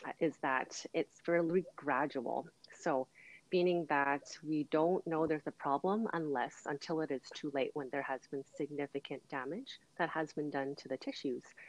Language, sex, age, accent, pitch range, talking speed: English, female, 30-49, American, 140-170 Hz, 170 wpm